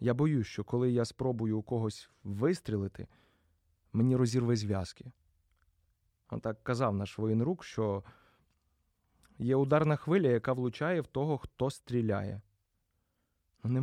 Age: 20-39